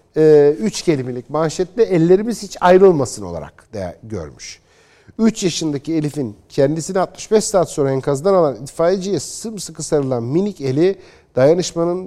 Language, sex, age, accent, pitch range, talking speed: Turkish, male, 50-69, native, 125-180 Hz, 120 wpm